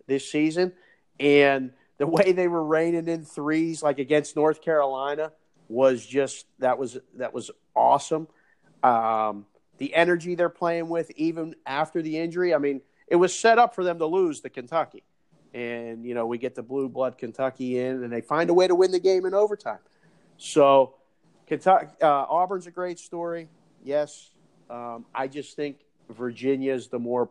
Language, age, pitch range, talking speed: English, 40-59, 125-160 Hz, 175 wpm